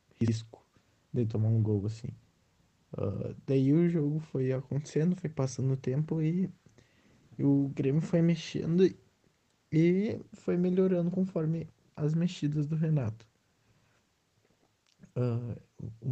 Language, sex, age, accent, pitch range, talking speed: Portuguese, male, 20-39, Brazilian, 125-150 Hz, 110 wpm